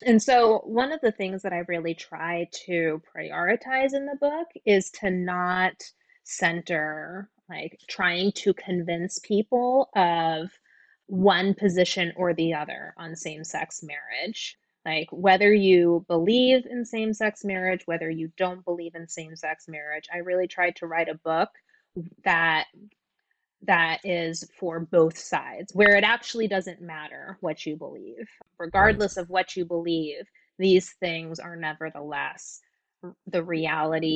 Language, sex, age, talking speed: English, female, 20-39, 140 wpm